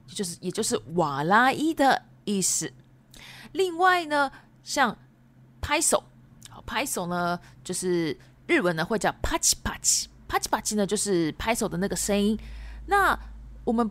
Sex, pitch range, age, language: female, 170-225 Hz, 20-39, Japanese